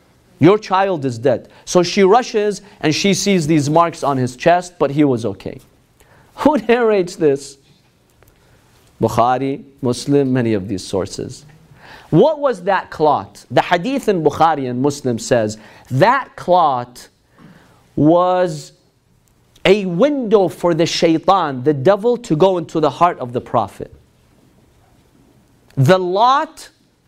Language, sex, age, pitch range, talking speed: English, male, 40-59, 145-220 Hz, 130 wpm